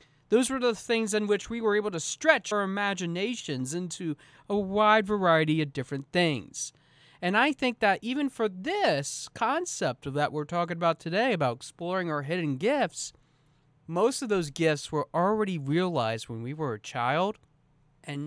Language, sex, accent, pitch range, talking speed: English, male, American, 145-220 Hz, 170 wpm